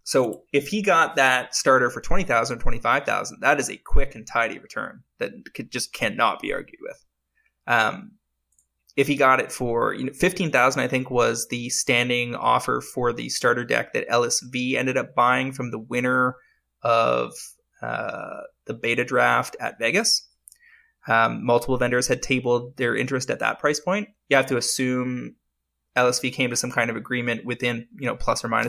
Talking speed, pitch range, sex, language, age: 175 wpm, 120-175 Hz, male, English, 20-39